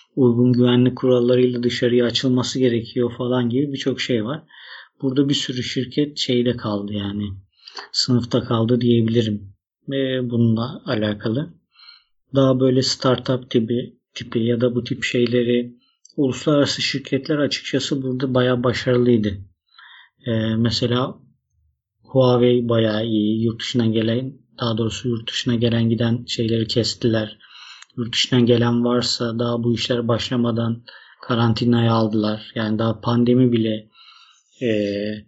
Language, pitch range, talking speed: Turkish, 115-130 Hz, 120 wpm